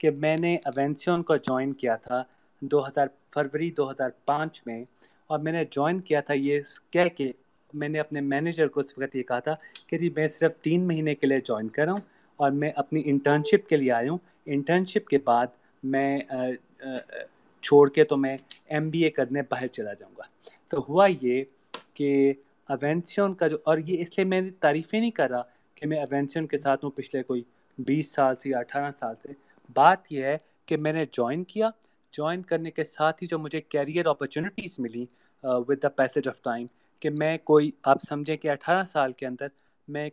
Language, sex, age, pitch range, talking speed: Urdu, male, 30-49, 135-160 Hz, 195 wpm